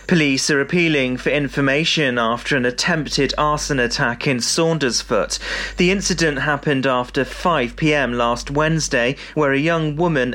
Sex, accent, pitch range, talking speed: male, British, 130-160 Hz, 135 wpm